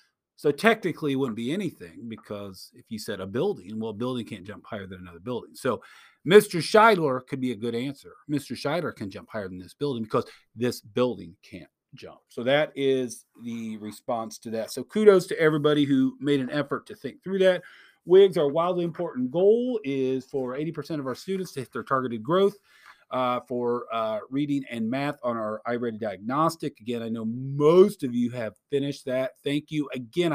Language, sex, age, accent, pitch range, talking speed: English, male, 40-59, American, 120-175 Hz, 195 wpm